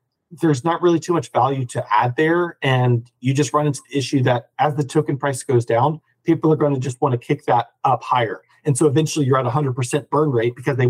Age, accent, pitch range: 40-59, American, 125-160 Hz